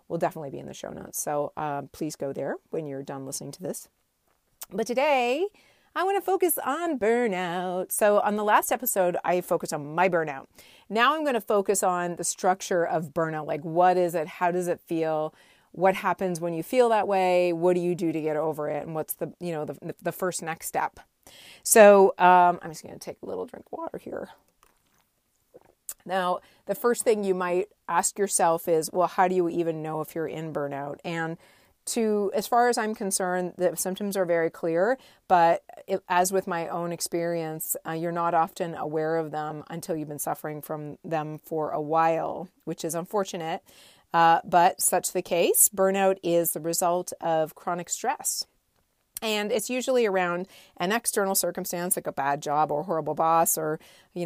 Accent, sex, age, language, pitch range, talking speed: American, female, 30-49, English, 160-190 Hz, 195 wpm